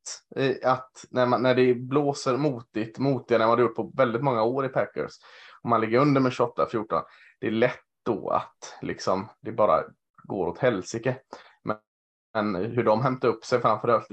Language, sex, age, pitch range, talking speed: Swedish, male, 20-39, 105-130 Hz, 185 wpm